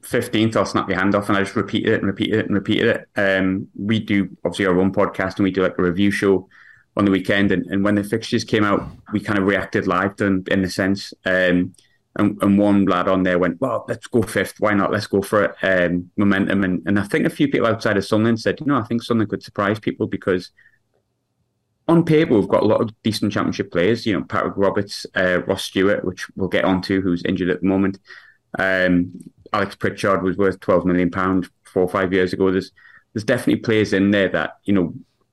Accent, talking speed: British, 235 wpm